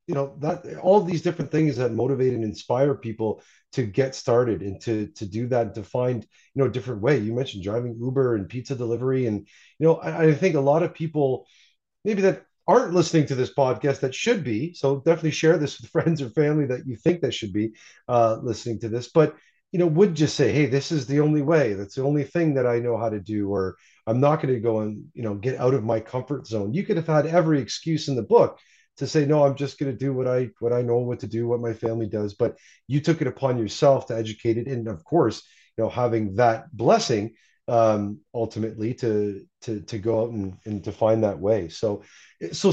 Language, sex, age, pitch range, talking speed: English, male, 30-49, 115-150 Hz, 235 wpm